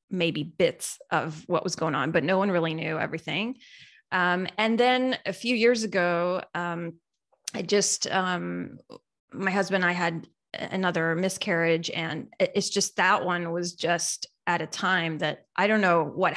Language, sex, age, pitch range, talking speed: English, female, 20-39, 165-210 Hz, 165 wpm